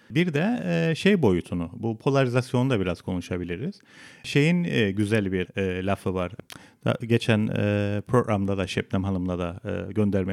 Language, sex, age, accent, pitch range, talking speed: Turkish, male, 40-59, native, 95-125 Hz, 120 wpm